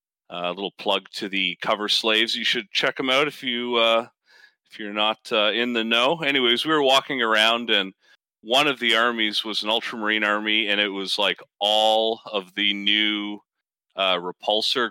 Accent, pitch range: American, 100-115 Hz